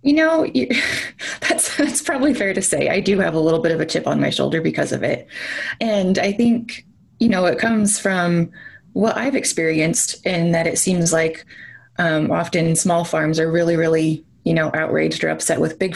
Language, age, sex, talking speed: English, 20-39, female, 205 wpm